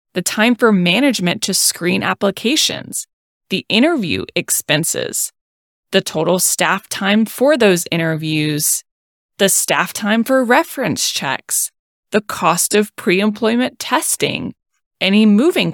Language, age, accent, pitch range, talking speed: English, 20-39, American, 180-235 Hz, 115 wpm